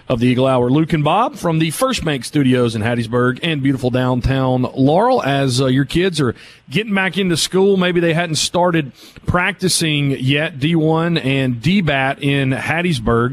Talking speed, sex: 170 wpm, male